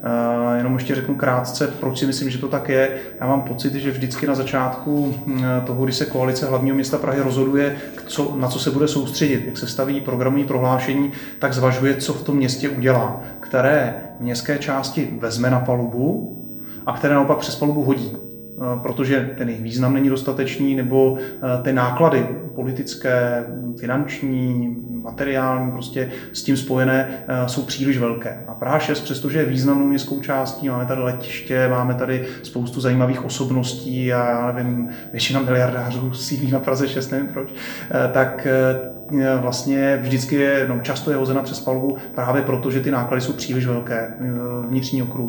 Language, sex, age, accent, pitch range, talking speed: Czech, male, 30-49, native, 125-135 Hz, 160 wpm